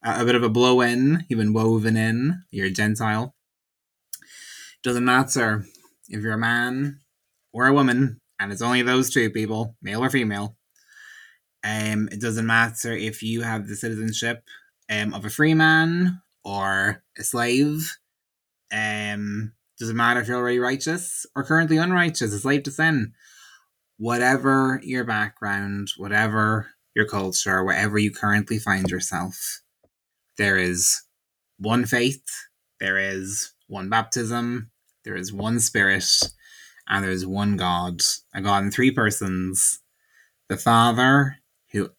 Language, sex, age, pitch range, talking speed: English, male, 20-39, 105-130 Hz, 140 wpm